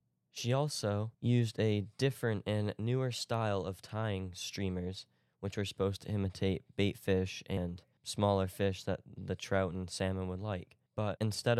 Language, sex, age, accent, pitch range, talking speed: English, male, 20-39, American, 95-110 Hz, 155 wpm